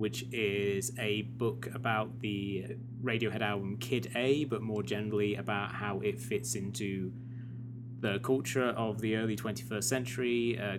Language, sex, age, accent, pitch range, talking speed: English, male, 20-39, British, 100-120 Hz, 145 wpm